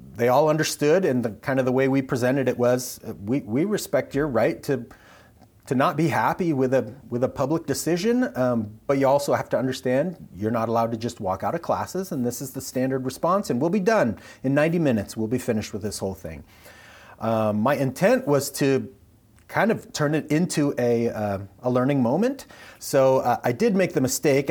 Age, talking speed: 30-49, 215 wpm